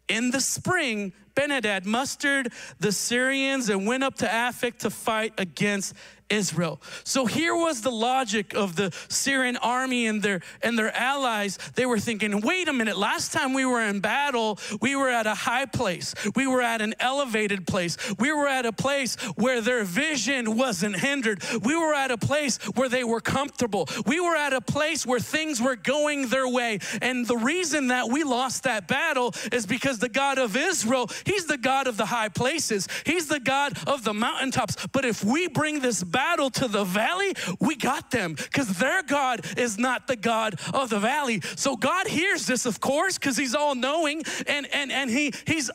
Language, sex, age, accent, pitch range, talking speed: English, male, 40-59, American, 220-275 Hz, 195 wpm